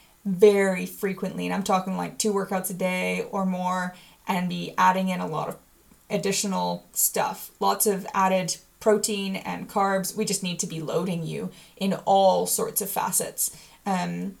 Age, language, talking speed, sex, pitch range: 10-29, English, 165 wpm, female, 190-225 Hz